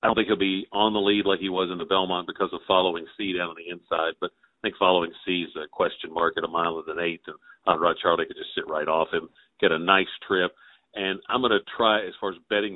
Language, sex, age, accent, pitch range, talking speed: English, male, 50-69, American, 90-125 Hz, 280 wpm